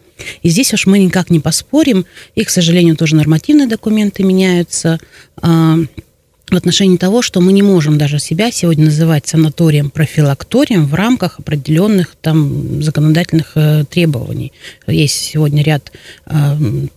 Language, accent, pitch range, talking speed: Russian, native, 155-205 Hz, 125 wpm